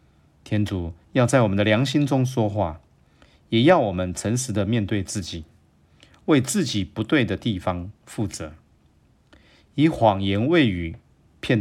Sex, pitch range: male, 90-115 Hz